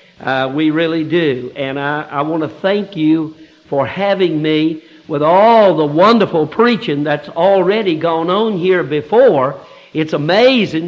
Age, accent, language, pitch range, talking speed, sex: 60-79, American, English, 140-185 Hz, 145 wpm, male